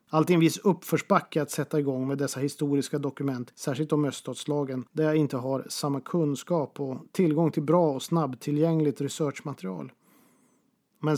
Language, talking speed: Swedish, 150 wpm